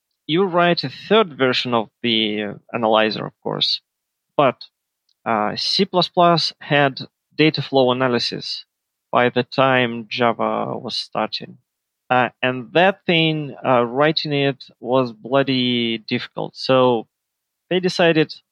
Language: English